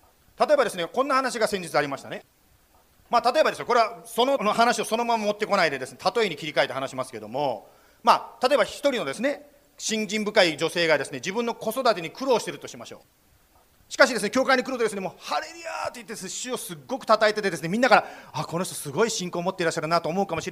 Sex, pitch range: male, 160-245 Hz